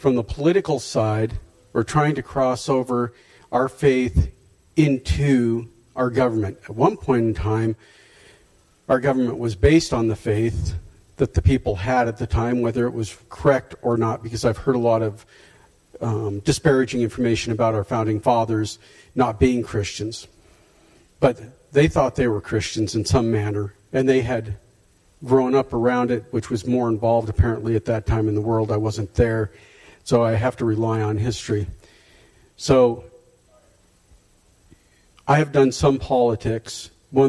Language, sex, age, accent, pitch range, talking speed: English, male, 50-69, American, 105-125 Hz, 160 wpm